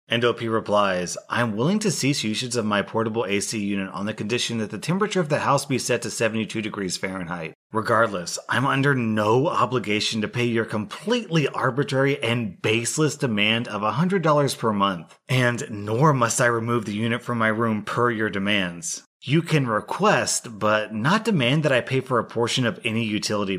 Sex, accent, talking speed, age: male, American, 185 wpm, 30-49